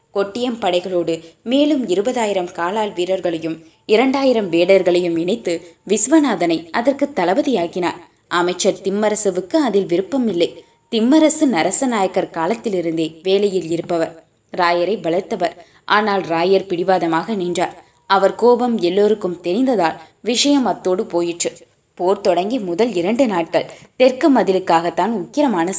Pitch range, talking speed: 175-220 Hz, 100 wpm